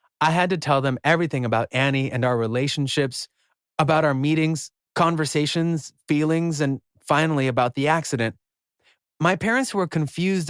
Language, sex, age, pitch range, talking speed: English, male, 30-49, 130-160 Hz, 145 wpm